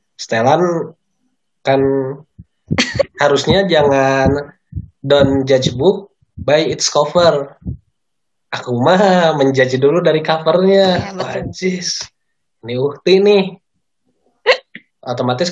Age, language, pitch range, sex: 20-39, Indonesian, 120-175 Hz, male